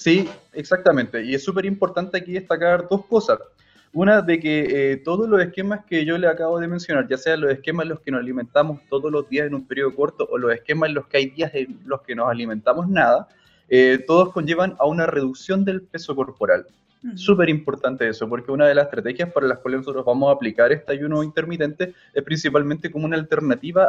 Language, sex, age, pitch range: Romanian, male, 20-39, 130-170 Hz